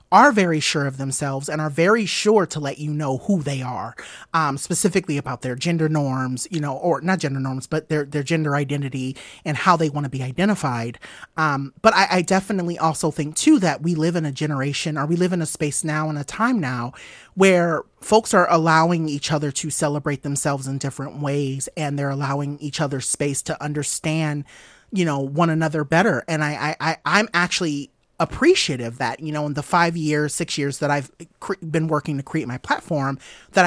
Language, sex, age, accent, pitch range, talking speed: English, male, 30-49, American, 135-165 Hz, 205 wpm